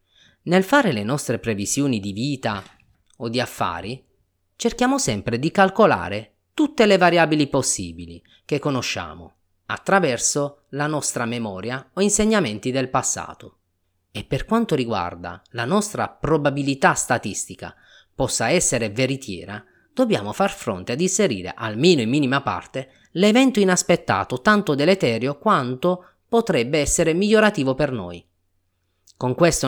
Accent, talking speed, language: native, 120 wpm, Italian